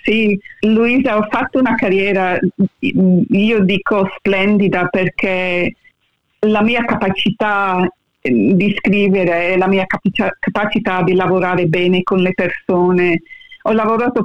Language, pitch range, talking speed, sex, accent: Italian, 190-225 Hz, 115 wpm, female, native